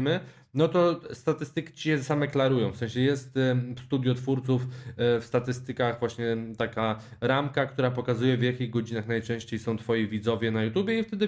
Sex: male